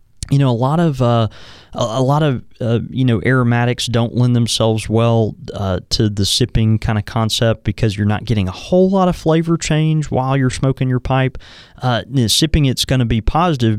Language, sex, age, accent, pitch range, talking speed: English, male, 20-39, American, 100-130 Hz, 210 wpm